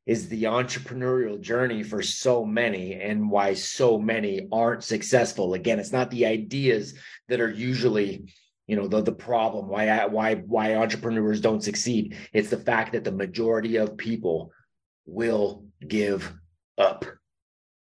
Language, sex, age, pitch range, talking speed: English, male, 30-49, 105-120 Hz, 150 wpm